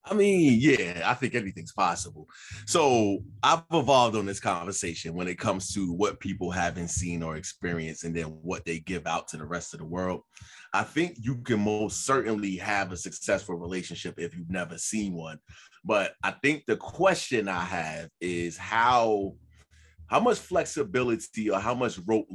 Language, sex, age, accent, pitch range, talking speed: English, male, 20-39, American, 90-110 Hz, 175 wpm